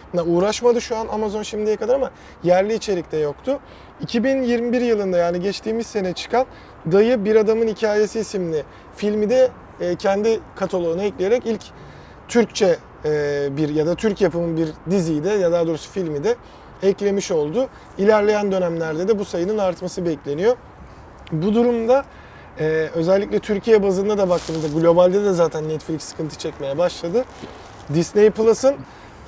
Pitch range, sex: 165-215 Hz, male